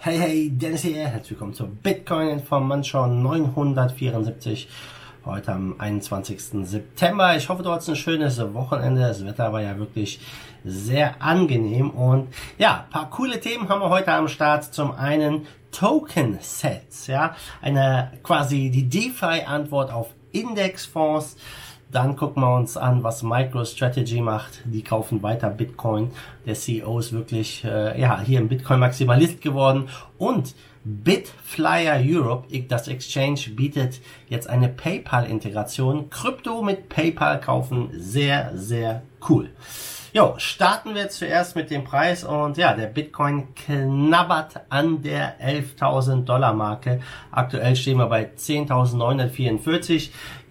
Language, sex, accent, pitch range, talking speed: German, male, German, 120-150 Hz, 130 wpm